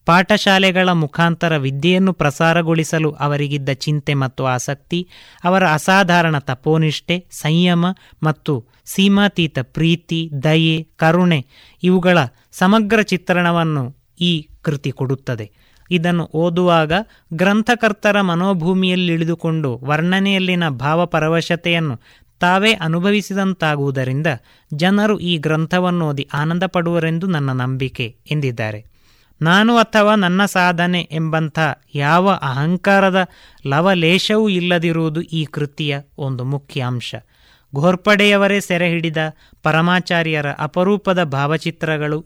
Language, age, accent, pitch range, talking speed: Kannada, 20-39, native, 145-180 Hz, 85 wpm